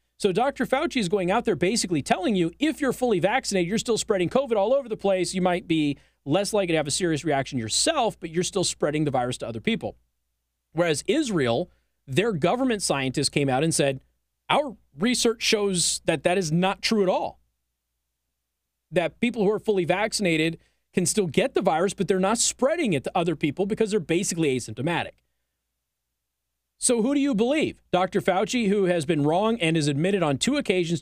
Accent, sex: American, male